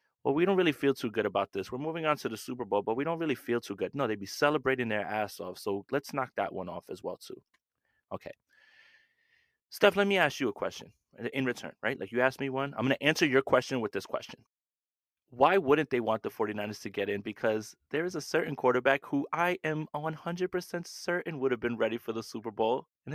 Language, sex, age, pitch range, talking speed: English, male, 20-39, 125-195 Hz, 240 wpm